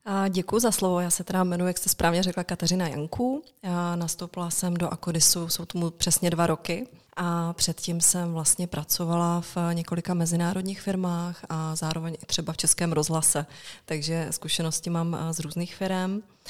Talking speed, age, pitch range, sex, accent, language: 165 wpm, 20-39, 160-180 Hz, female, native, Czech